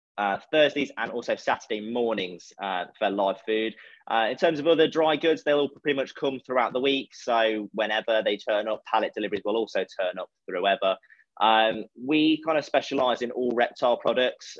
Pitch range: 105-140 Hz